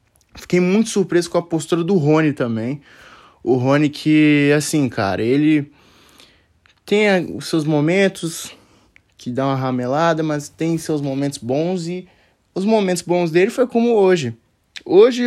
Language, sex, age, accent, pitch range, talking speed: Portuguese, male, 20-39, Brazilian, 130-175 Hz, 145 wpm